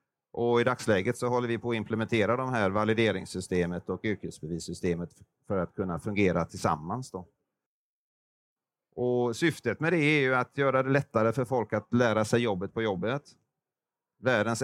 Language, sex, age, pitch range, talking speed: Swedish, male, 40-59, 95-120 Hz, 155 wpm